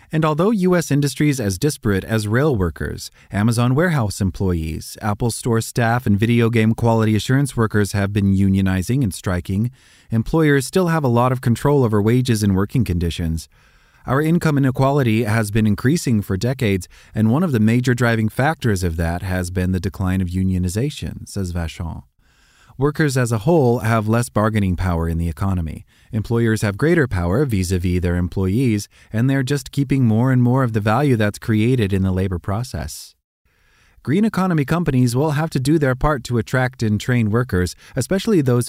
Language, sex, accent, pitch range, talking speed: English, male, American, 95-130 Hz, 175 wpm